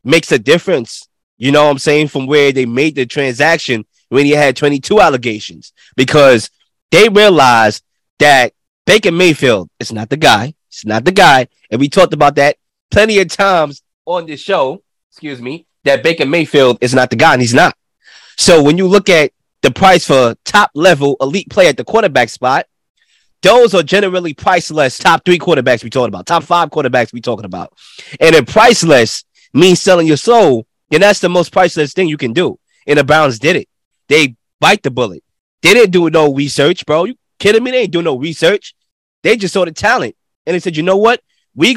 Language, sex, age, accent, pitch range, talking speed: English, male, 20-39, American, 145-185 Hz, 200 wpm